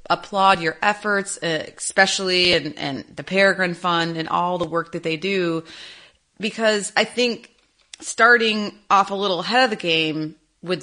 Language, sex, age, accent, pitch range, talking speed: English, female, 30-49, American, 165-195 Hz, 150 wpm